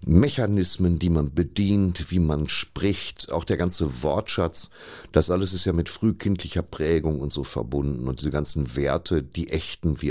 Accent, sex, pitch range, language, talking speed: German, male, 70-90 Hz, German, 165 wpm